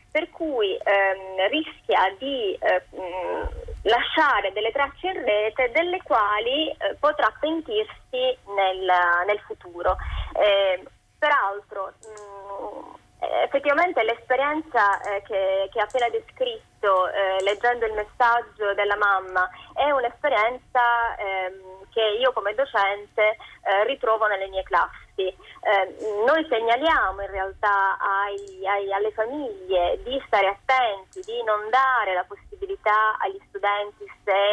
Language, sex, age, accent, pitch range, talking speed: Italian, female, 20-39, native, 195-280 Hz, 115 wpm